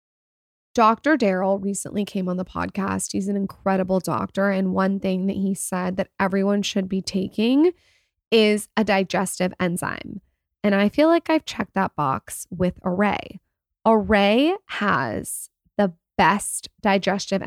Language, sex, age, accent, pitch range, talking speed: English, female, 20-39, American, 190-230 Hz, 140 wpm